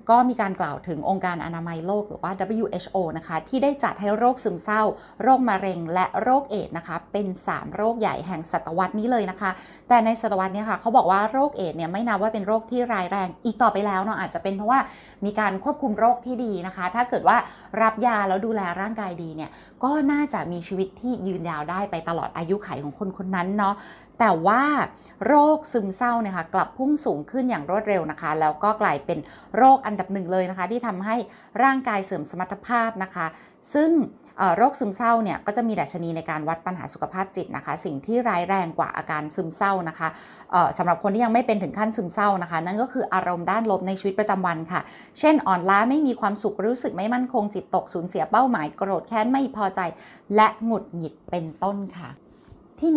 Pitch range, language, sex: 185-235 Hz, Thai, female